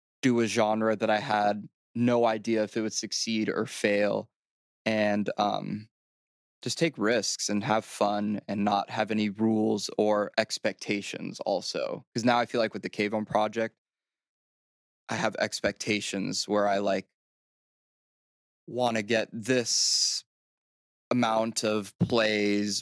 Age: 20-39